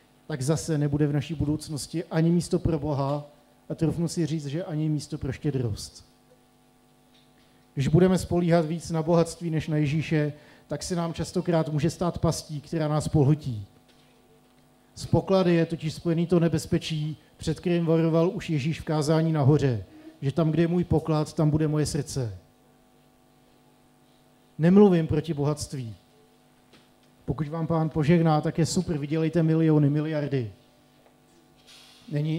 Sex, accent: male, native